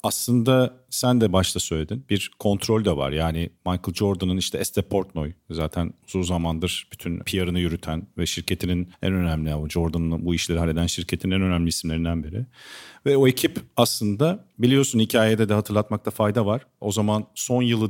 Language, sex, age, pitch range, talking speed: Turkish, male, 50-69, 95-125 Hz, 160 wpm